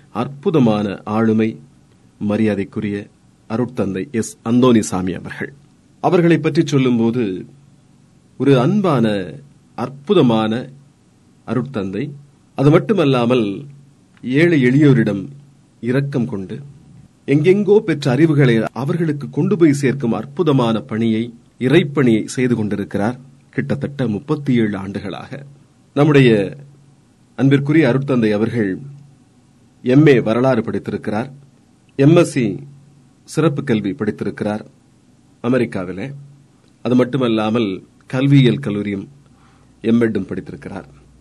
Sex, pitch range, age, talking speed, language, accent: male, 115-140 Hz, 40-59, 75 wpm, Tamil, native